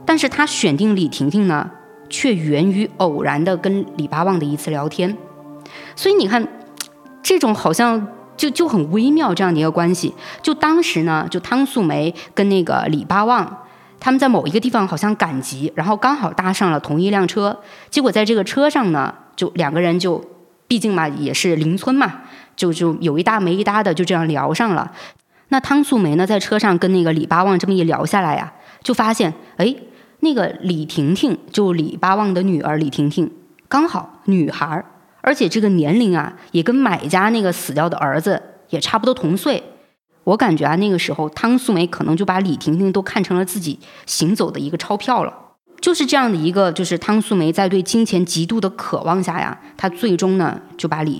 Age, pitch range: 20-39, 160-220 Hz